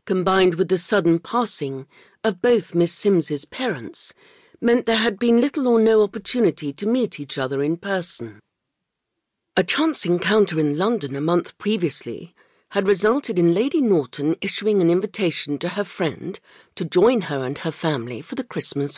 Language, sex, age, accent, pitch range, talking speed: English, female, 50-69, British, 155-225 Hz, 165 wpm